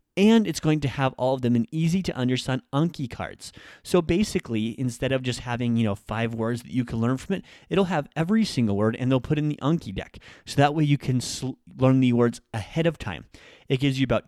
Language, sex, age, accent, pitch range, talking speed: English, male, 30-49, American, 110-140 Hz, 240 wpm